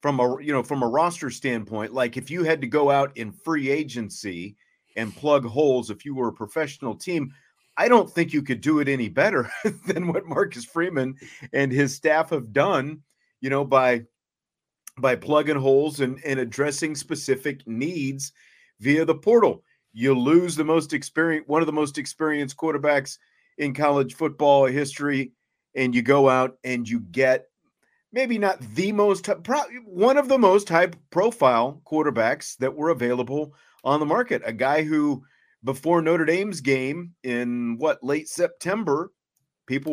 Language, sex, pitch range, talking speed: English, male, 130-165 Hz, 165 wpm